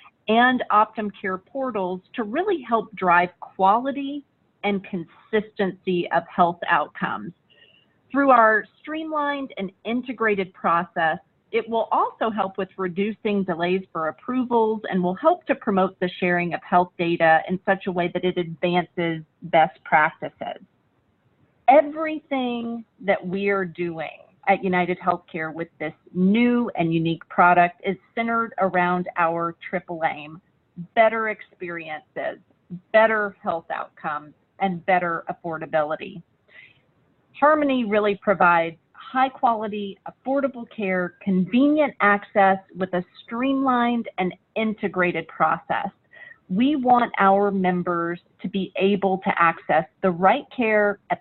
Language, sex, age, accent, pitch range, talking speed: English, female, 40-59, American, 175-225 Hz, 120 wpm